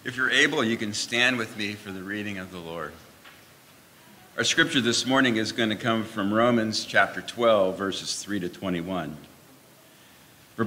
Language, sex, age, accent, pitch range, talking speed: English, male, 50-69, American, 95-120 Hz, 175 wpm